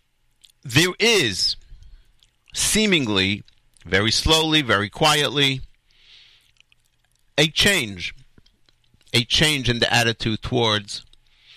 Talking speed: 80 wpm